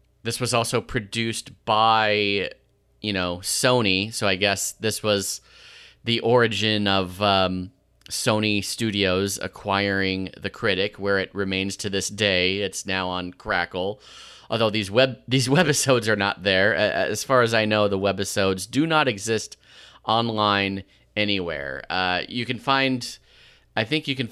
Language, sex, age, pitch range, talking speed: English, male, 30-49, 95-115 Hz, 150 wpm